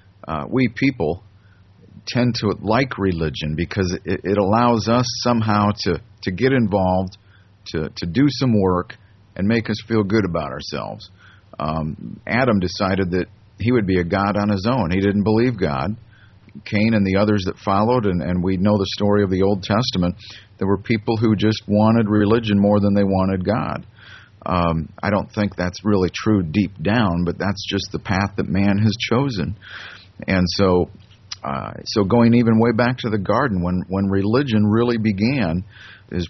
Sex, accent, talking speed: male, American, 180 wpm